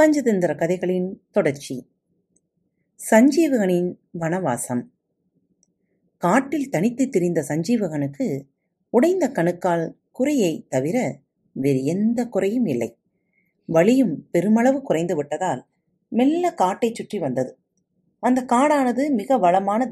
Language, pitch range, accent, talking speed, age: Tamil, 165-245 Hz, native, 85 wpm, 30-49